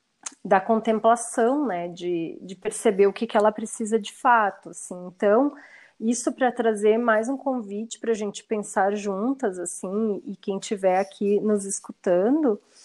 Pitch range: 195-240 Hz